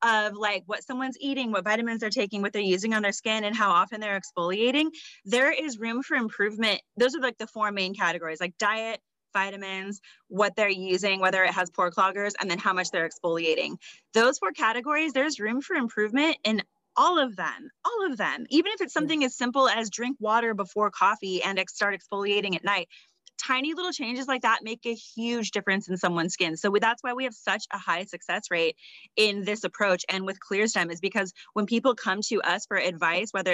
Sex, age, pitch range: female, 20-39, 190-235 Hz